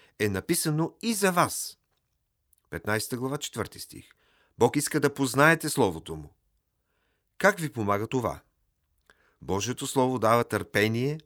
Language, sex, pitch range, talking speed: Bulgarian, male, 100-135 Hz, 125 wpm